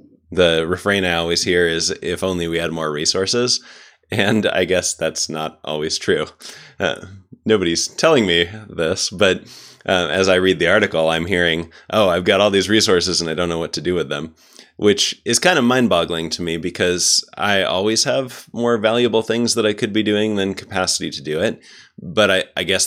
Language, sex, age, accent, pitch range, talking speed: English, male, 30-49, American, 75-95 Hz, 200 wpm